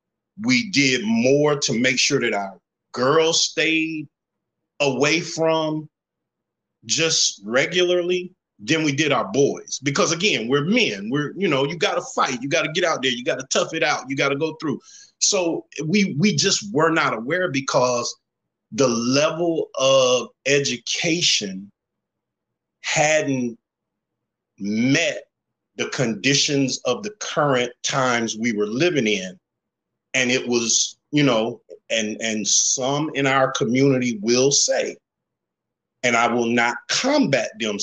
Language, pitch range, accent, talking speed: English, 125-160 Hz, American, 145 wpm